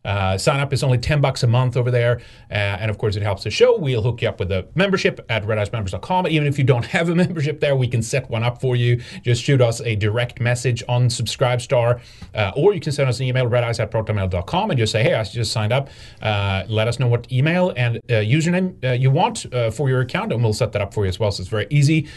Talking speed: 270 wpm